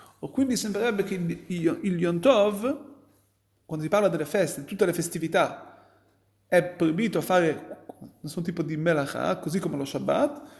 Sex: male